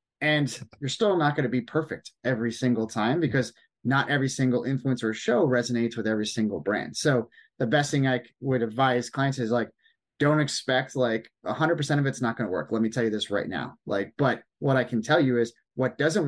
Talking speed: 220 wpm